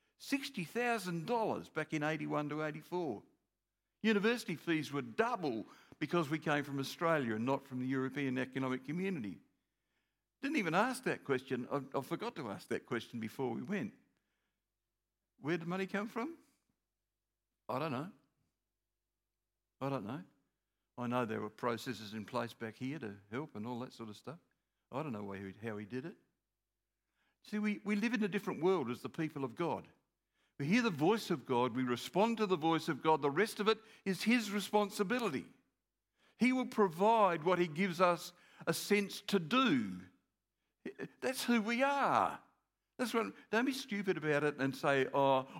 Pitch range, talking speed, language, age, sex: 130-205 Hz, 165 wpm, English, 60-79, male